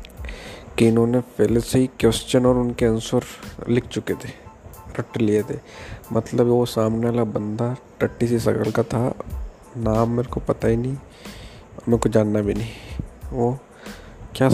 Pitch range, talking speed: 110-120 Hz, 155 wpm